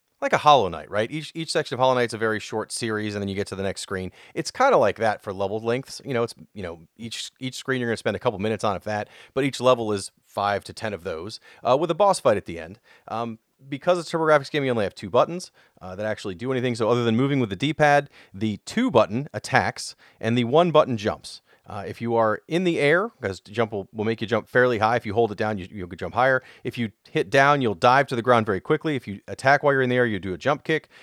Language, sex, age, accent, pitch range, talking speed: English, male, 30-49, American, 105-135 Hz, 280 wpm